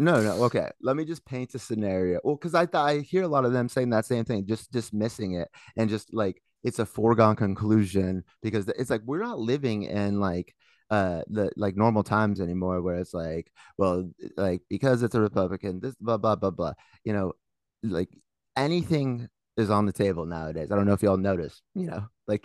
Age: 30-49